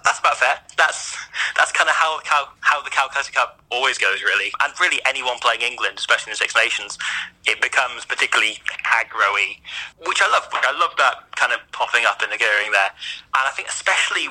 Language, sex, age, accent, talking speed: English, male, 20-39, British, 200 wpm